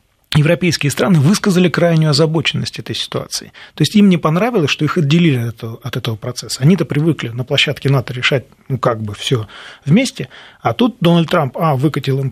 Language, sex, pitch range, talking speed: Russian, male, 135-175 Hz, 180 wpm